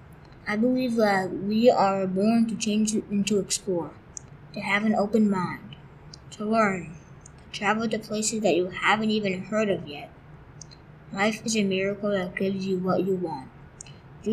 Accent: American